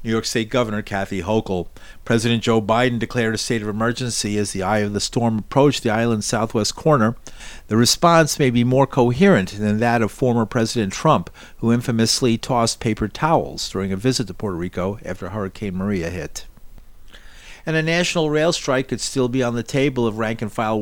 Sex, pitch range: male, 100-120 Hz